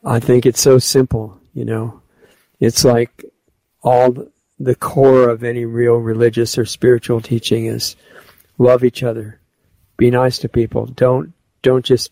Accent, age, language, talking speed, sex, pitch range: American, 50-69, English, 150 wpm, male, 115-125 Hz